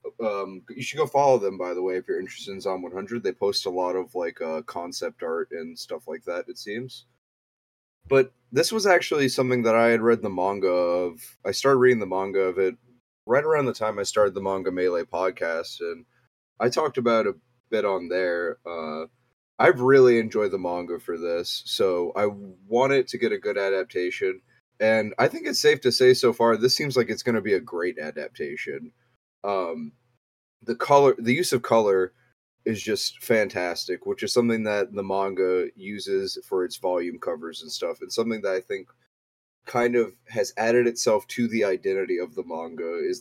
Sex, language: male, English